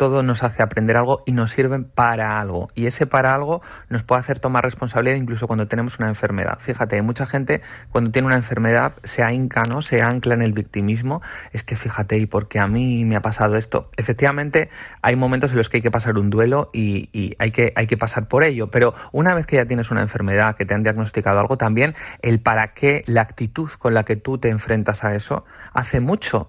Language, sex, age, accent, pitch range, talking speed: Spanish, male, 30-49, Spanish, 110-130 Hz, 225 wpm